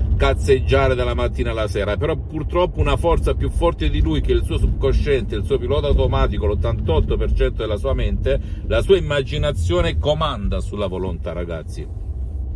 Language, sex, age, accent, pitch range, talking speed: Italian, male, 50-69, native, 85-105 Hz, 155 wpm